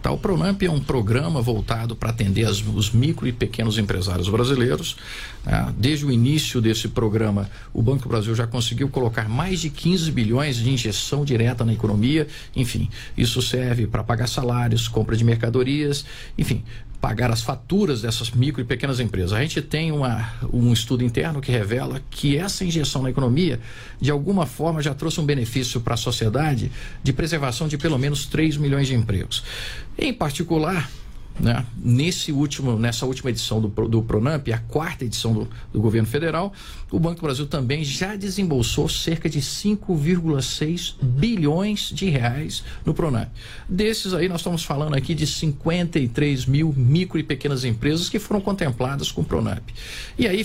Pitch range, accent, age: 120-160 Hz, Brazilian, 50-69